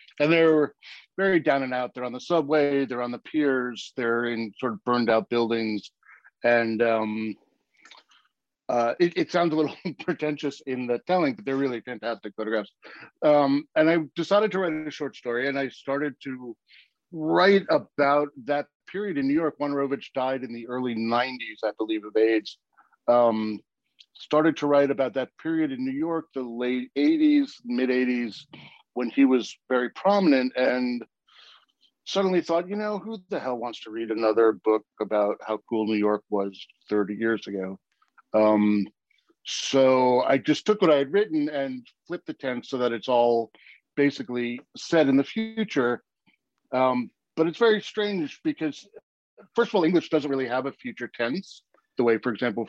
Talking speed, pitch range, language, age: 170 wpm, 115-155 Hz, English, 60-79